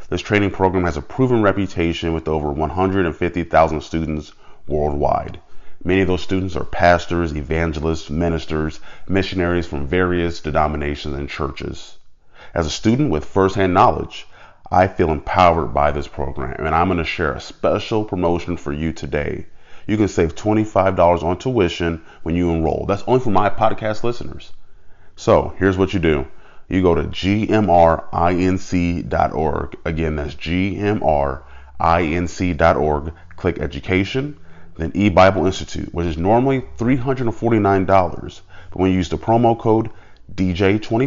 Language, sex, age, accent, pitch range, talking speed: English, male, 30-49, American, 80-95 Hz, 135 wpm